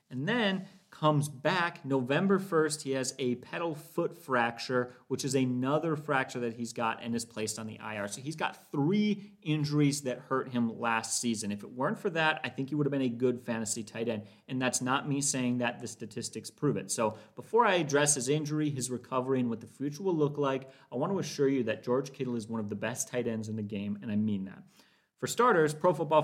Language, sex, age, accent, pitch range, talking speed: English, male, 30-49, American, 120-150 Hz, 235 wpm